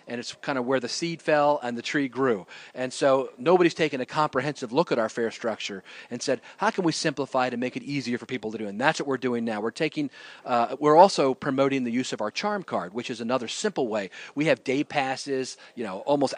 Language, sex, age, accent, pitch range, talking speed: English, male, 40-59, American, 130-160 Hz, 255 wpm